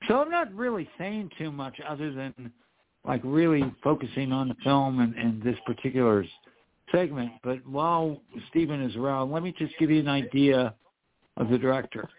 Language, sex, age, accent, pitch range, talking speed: English, male, 60-79, American, 125-150 Hz, 175 wpm